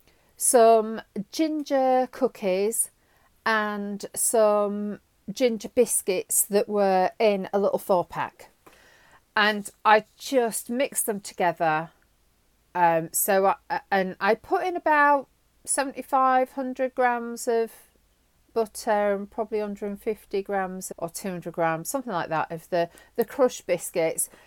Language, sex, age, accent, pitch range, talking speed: English, female, 40-59, British, 180-250 Hz, 115 wpm